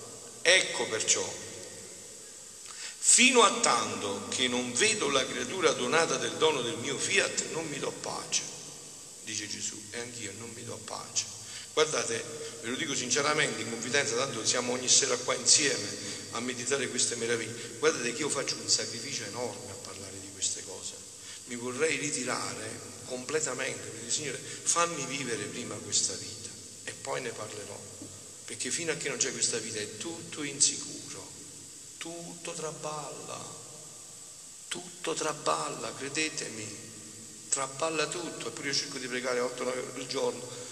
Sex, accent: male, native